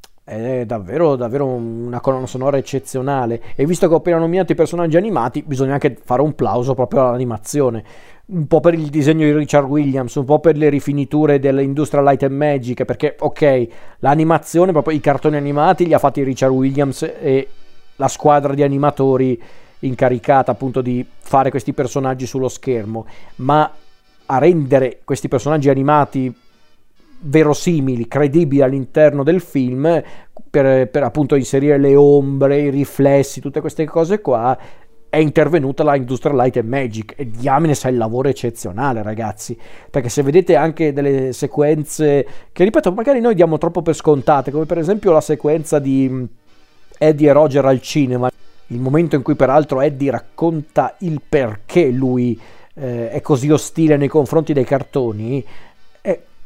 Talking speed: 155 wpm